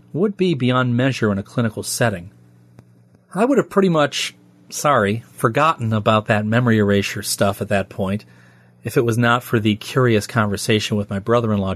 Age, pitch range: 40-59, 100-135 Hz